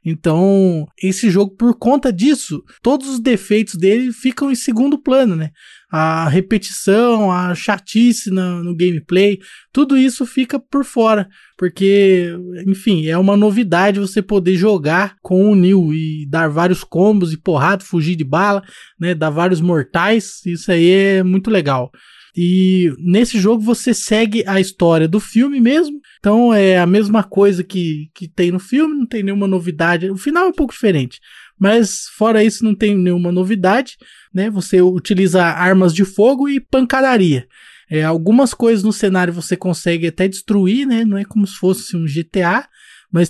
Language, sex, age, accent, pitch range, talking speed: Portuguese, male, 20-39, Brazilian, 175-220 Hz, 165 wpm